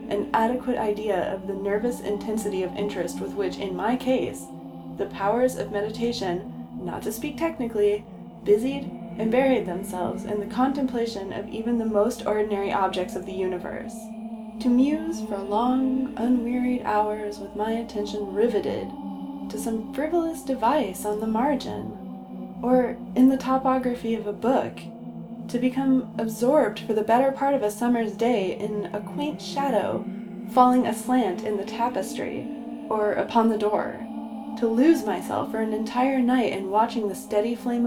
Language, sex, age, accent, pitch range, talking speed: English, female, 20-39, American, 205-245 Hz, 155 wpm